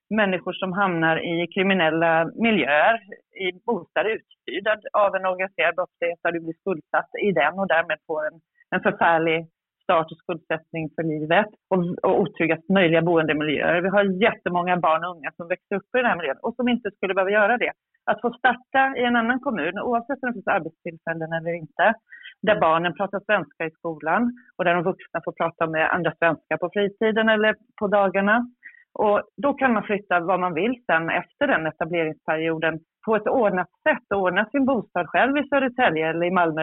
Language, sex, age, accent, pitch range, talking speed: Swedish, female, 30-49, native, 170-220 Hz, 190 wpm